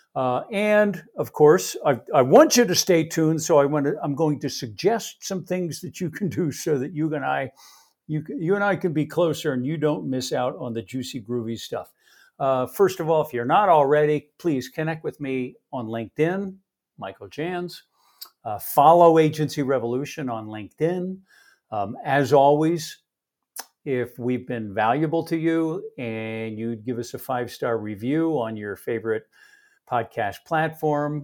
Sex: male